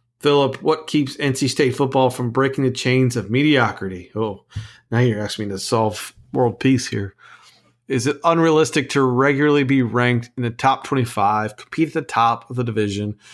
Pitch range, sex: 115-130 Hz, male